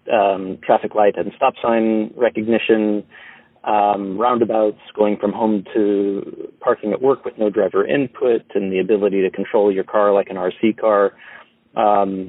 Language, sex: English, male